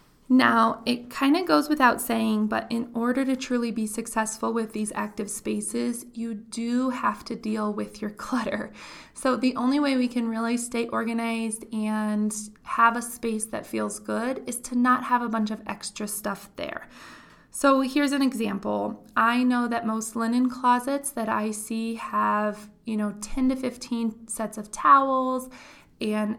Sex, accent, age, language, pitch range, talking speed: female, American, 20-39, English, 215-250 Hz, 170 wpm